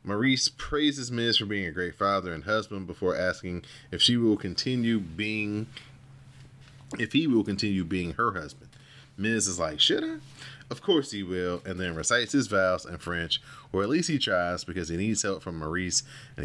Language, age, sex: English, 30-49, male